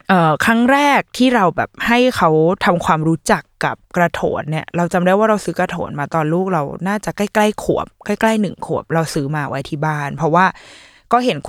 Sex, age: female, 20-39